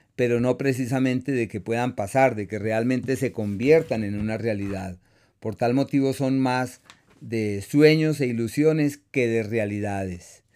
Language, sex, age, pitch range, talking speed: Spanish, male, 40-59, 110-130 Hz, 155 wpm